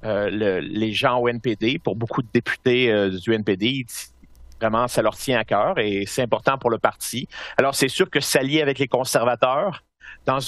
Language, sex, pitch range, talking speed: French, male, 120-150 Hz, 195 wpm